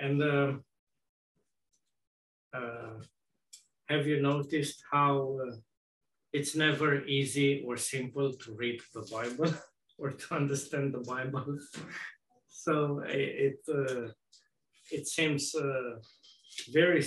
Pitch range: 125-145 Hz